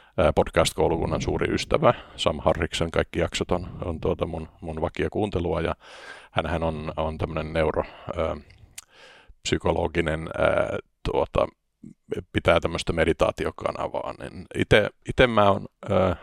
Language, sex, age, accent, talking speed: Finnish, male, 50-69, native, 115 wpm